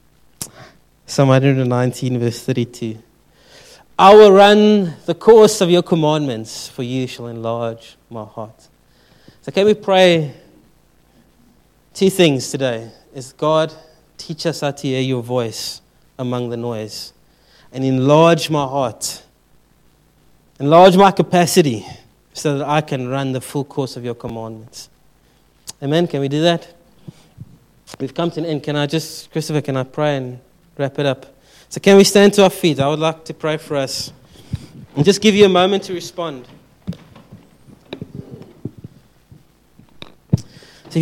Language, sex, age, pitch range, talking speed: English, male, 30-49, 135-180 Hz, 145 wpm